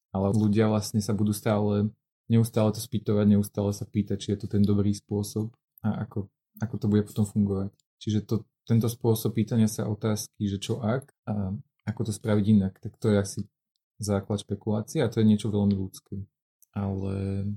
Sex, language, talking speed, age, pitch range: male, Slovak, 180 wpm, 20-39, 100-110 Hz